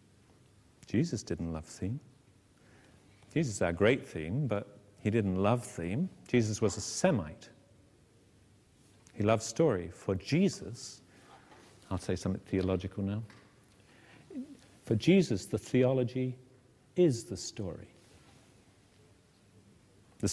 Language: English